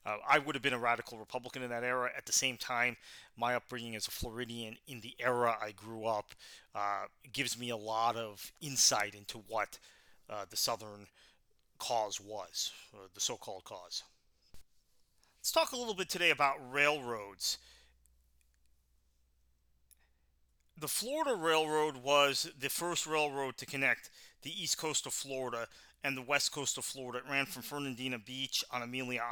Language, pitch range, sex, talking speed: English, 110-135 Hz, male, 160 wpm